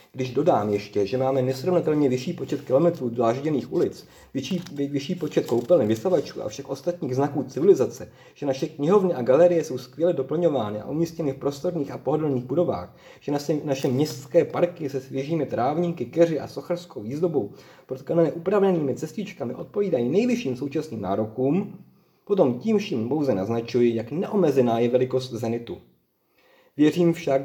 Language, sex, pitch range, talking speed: Czech, male, 125-170 Hz, 145 wpm